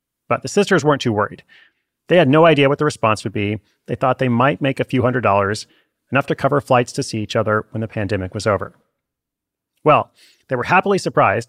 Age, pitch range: 30-49, 120-160 Hz